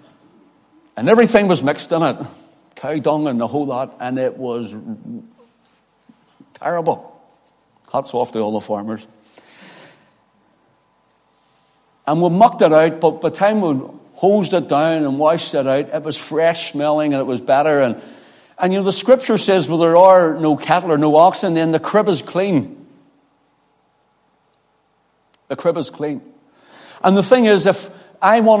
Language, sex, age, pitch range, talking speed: English, male, 60-79, 150-200 Hz, 160 wpm